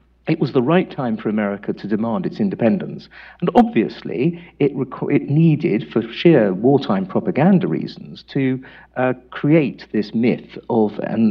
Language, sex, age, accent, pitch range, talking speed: English, male, 50-69, British, 115-185 Hz, 150 wpm